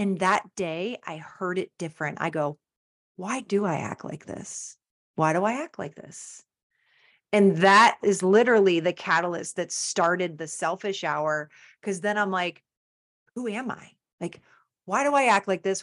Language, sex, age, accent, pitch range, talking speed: English, female, 30-49, American, 170-210 Hz, 175 wpm